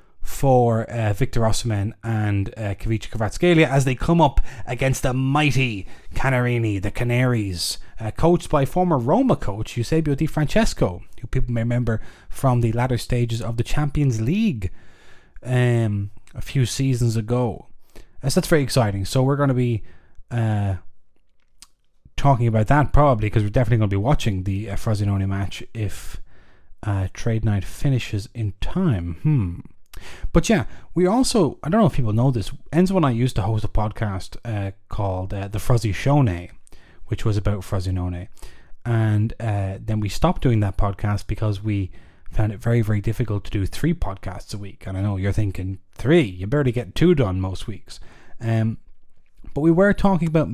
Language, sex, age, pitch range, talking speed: English, male, 20-39, 105-145 Hz, 175 wpm